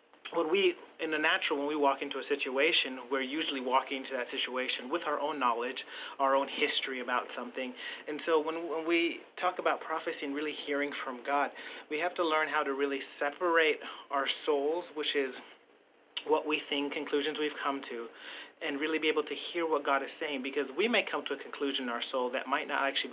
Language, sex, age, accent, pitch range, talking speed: English, male, 30-49, American, 130-155 Hz, 215 wpm